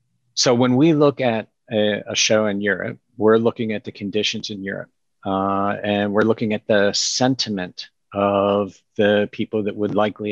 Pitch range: 105-135 Hz